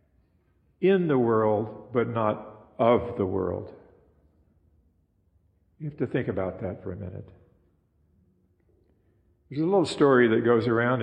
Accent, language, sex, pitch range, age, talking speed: American, English, male, 105-145 Hz, 50-69, 130 wpm